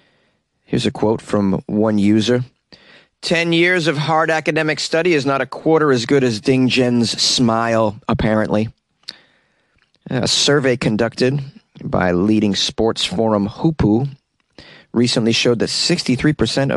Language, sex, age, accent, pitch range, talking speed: English, male, 30-49, American, 110-145 Hz, 125 wpm